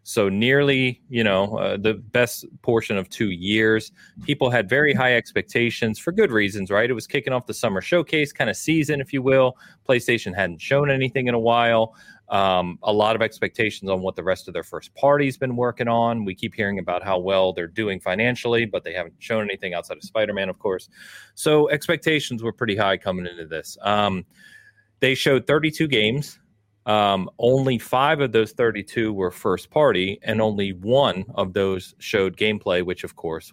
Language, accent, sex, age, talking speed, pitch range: English, American, male, 30-49, 190 wpm, 95-125 Hz